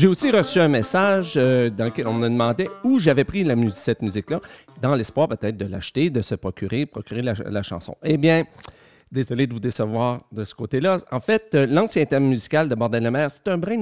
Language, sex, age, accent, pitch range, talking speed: French, male, 40-59, Canadian, 115-155 Hz, 215 wpm